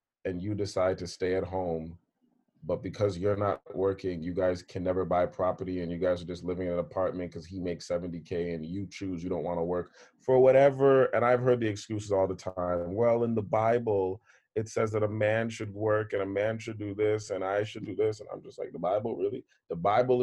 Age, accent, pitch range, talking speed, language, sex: 30-49, American, 90-110 Hz, 235 wpm, English, male